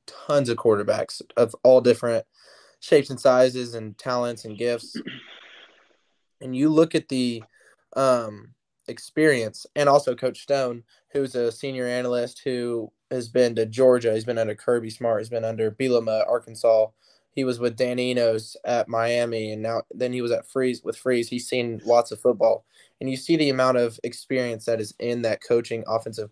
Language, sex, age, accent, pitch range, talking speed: English, male, 20-39, American, 115-135 Hz, 175 wpm